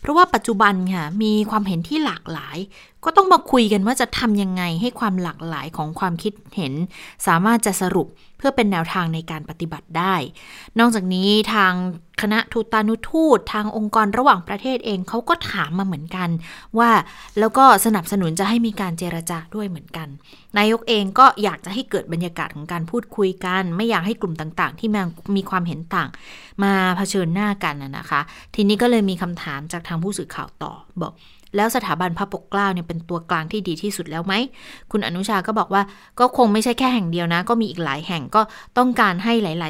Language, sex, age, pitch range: Thai, female, 20-39, 175-220 Hz